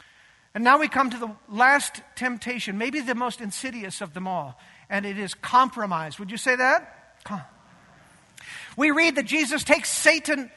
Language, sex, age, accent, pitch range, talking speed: English, male, 50-69, American, 220-315 Hz, 170 wpm